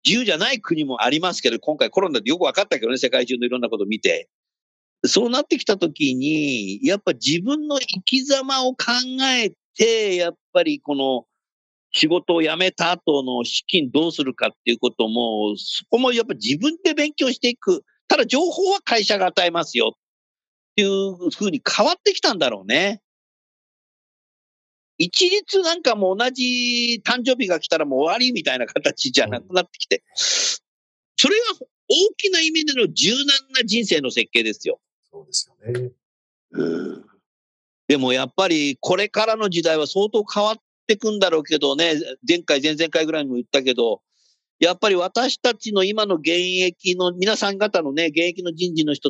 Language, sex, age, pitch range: Japanese, male, 50-69, 165-275 Hz